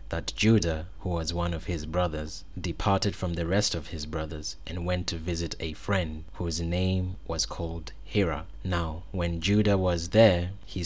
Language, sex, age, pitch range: English, male, 20-39, 80-95 Hz